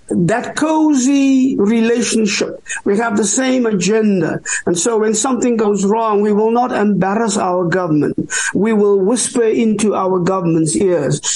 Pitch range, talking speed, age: 210-275 Hz, 145 wpm, 50-69